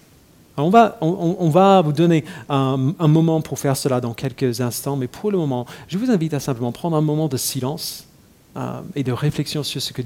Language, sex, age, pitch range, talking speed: French, male, 40-59, 125-145 Hz, 220 wpm